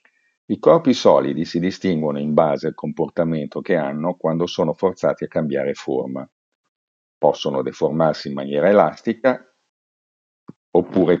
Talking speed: 125 wpm